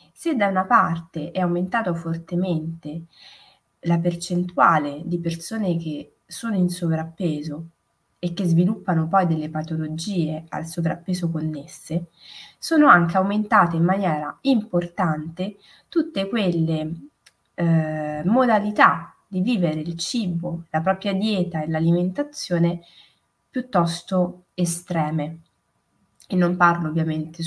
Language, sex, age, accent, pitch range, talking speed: Italian, female, 20-39, native, 160-180 Hz, 105 wpm